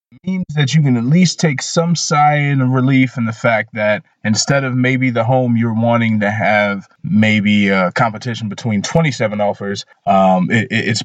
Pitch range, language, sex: 100-130 Hz, English, male